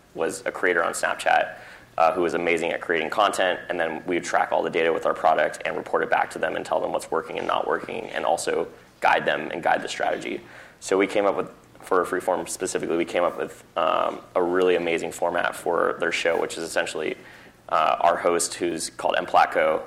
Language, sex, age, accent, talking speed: English, male, 20-39, American, 225 wpm